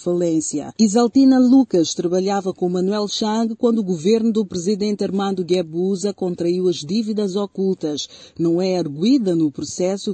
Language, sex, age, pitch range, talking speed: Portuguese, female, 40-59, 170-220 Hz, 130 wpm